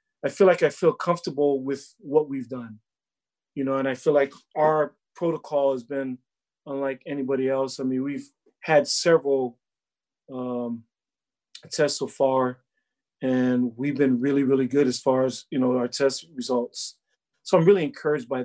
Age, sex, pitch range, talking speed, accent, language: 30-49, male, 130-150 Hz, 165 wpm, American, English